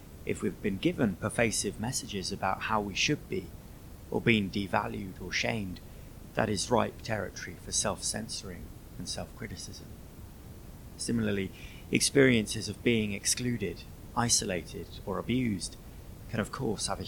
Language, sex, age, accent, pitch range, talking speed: English, male, 30-49, British, 95-120 Hz, 130 wpm